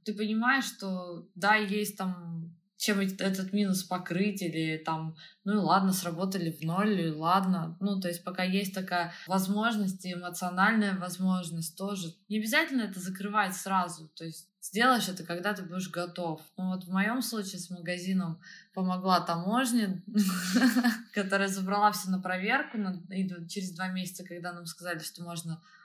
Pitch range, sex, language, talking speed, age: 175-200 Hz, female, Russian, 155 wpm, 20-39